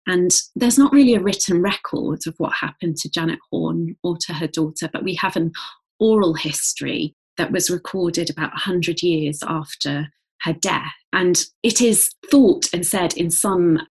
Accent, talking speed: British, 175 wpm